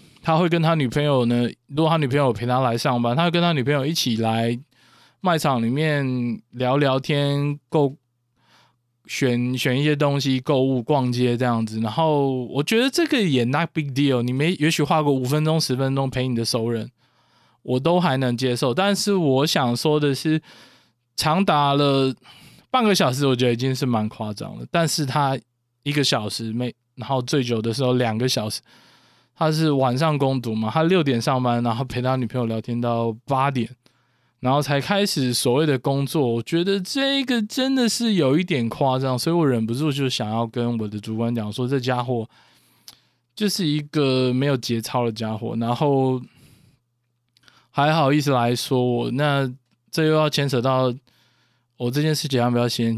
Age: 20-39